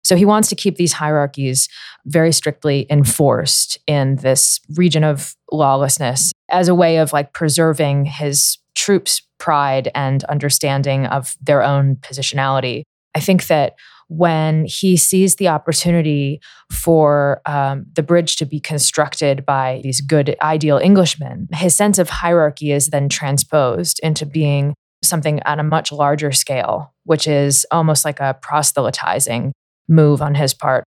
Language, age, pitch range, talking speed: English, 20-39, 140-165 Hz, 145 wpm